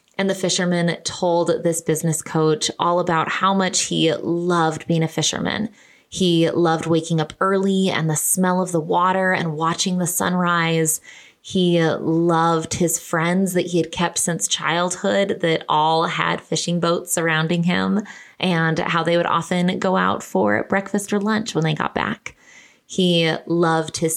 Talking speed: 165 wpm